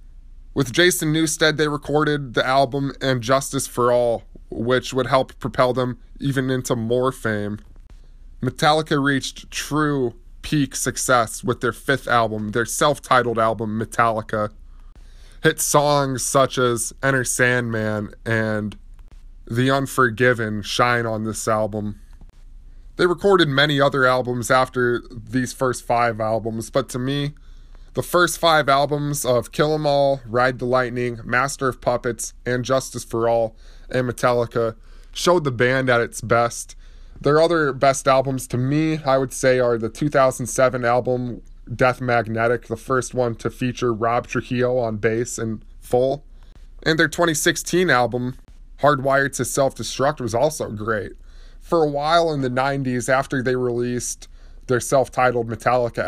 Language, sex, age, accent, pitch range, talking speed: English, male, 20-39, American, 115-135 Hz, 145 wpm